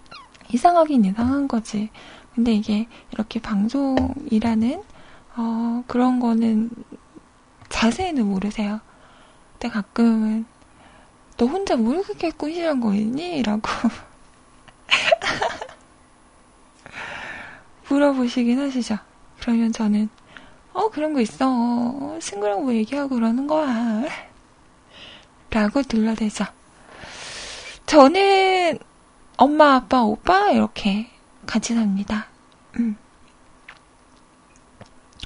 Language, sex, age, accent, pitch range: Korean, female, 20-39, native, 220-275 Hz